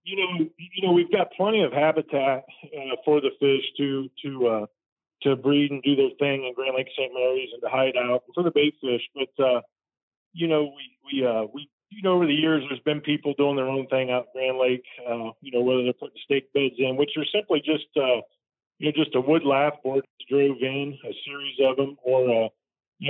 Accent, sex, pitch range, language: American, male, 130-150 Hz, English